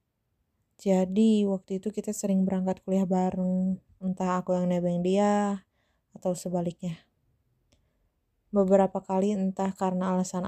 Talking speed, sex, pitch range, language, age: 115 wpm, female, 180-195 Hz, Indonesian, 20-39